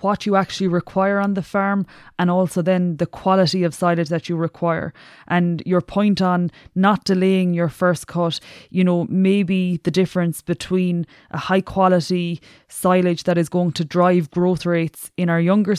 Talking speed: 175 wpm